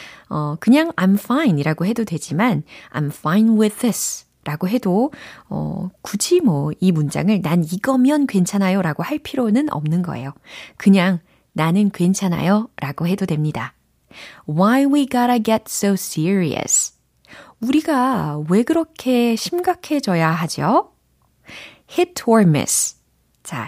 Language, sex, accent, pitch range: Korean, female, native, 155-235 Hz